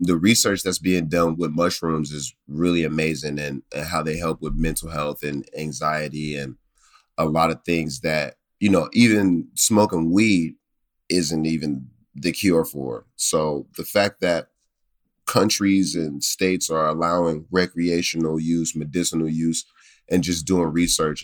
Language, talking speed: English, 150 wpm